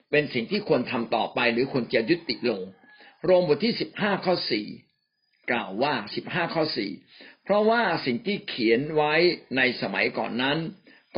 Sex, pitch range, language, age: male, 125-175 Hz, Thai, 60-79